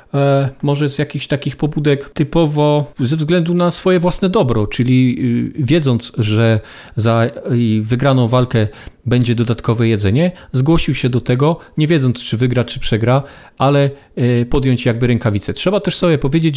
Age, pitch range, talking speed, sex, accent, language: 40-59, 125-155 Hz, 140 wpm, male, native, Polish